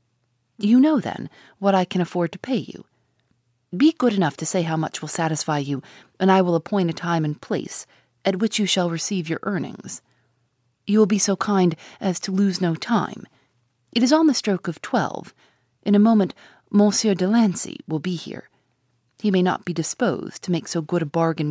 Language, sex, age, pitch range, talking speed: English, female, 30-49, 145-205 Hz, 200 wpm